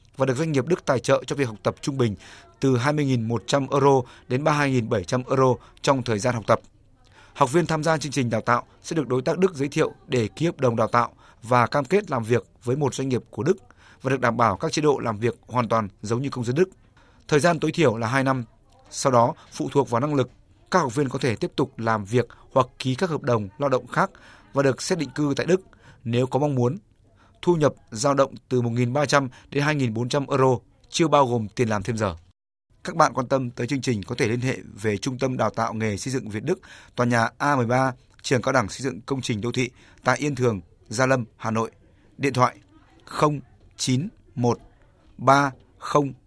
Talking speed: 225 wpm